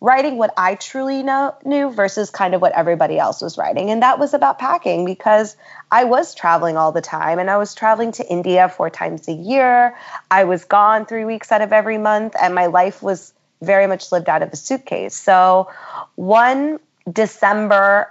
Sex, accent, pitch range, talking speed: female, American, 180-220 Hz, 195 wpm